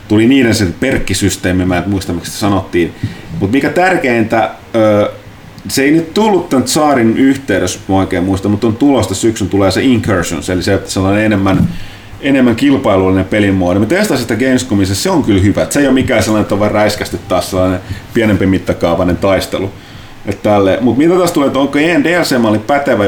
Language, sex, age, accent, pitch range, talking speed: Finnish, male, 30-49, native, 95-120 Hz, 170 wpm